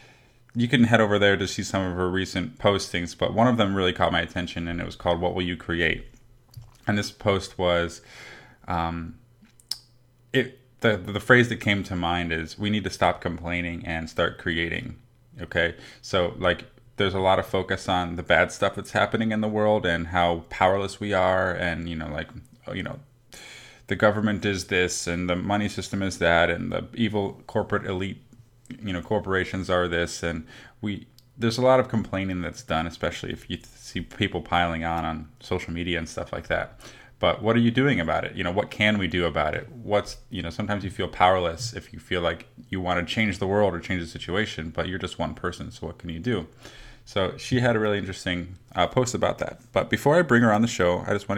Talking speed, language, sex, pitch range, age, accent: 220 wpm, English, male, 90-115 Hz, 20-39, American